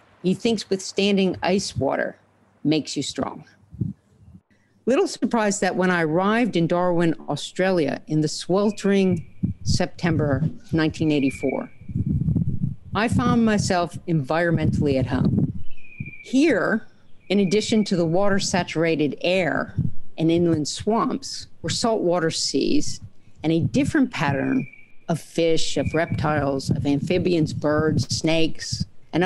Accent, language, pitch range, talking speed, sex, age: American, English, 140-190 Hz, 115 wpm, female, 50-69